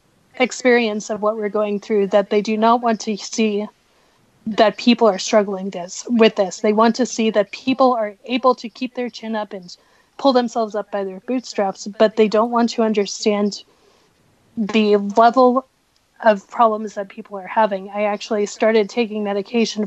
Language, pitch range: English, 200-225 Hz